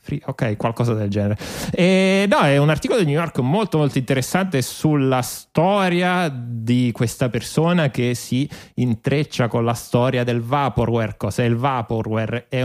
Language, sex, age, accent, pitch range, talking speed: Italian, male, 30-49, native, 115-140 Hz, 150 wpm